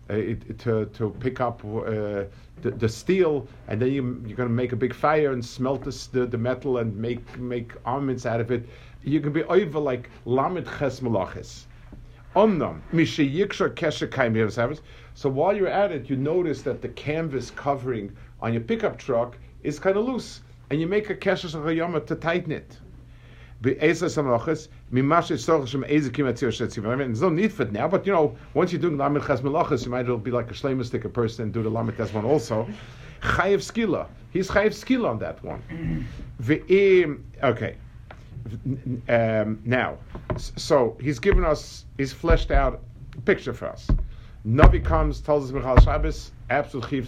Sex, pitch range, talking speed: male, 115-150 Hz, 150 wpm